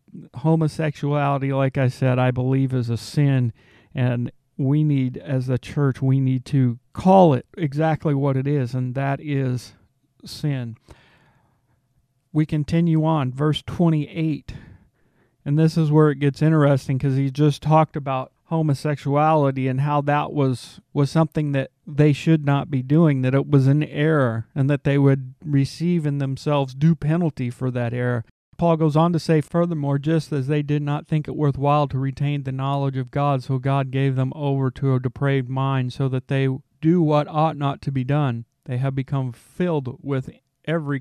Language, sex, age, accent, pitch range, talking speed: English, male, 40-59, American, 130-150 Hz, 175 wpm